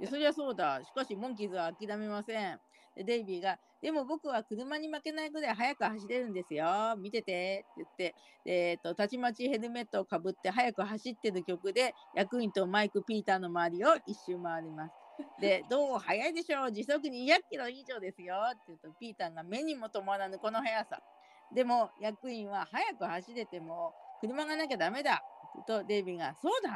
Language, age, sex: Japanese, 40-59, female